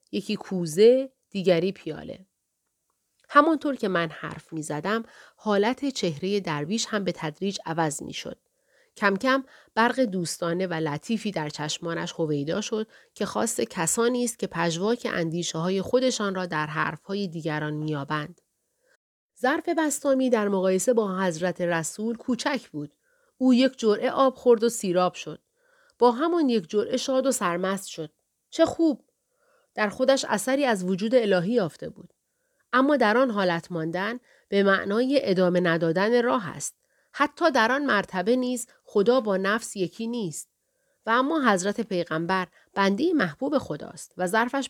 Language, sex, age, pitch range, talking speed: Persian, female, 40-59, 180-255 Hz, 140 wpm